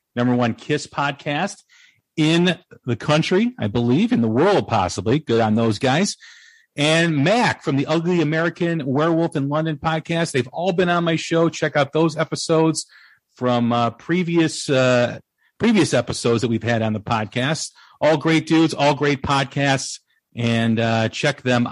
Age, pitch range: 40-59, 125-170 Hz